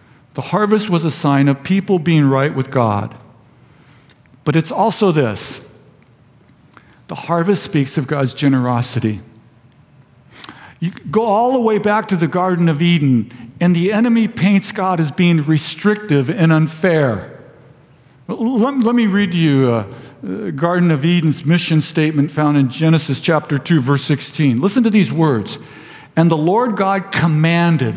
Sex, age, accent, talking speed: male, 50-69, American, 145 wpm